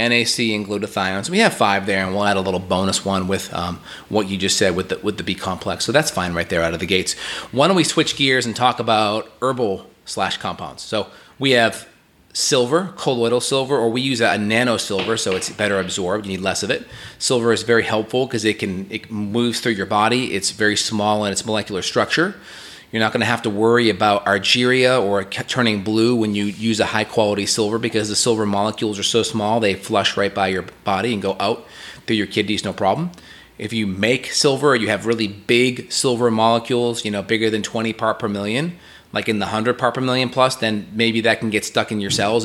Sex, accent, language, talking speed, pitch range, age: male, American, English, 230 wpm, 100-115 Hz, 30-49